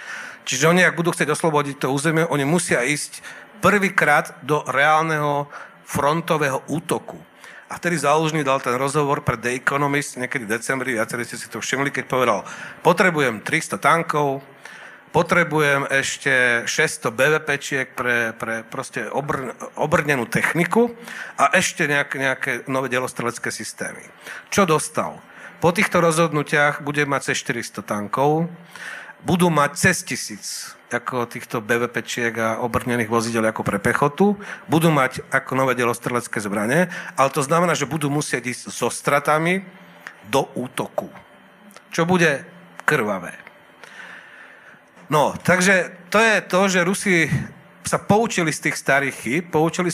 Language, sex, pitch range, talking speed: Slovak, male, 130-175 Hz, 135 wpm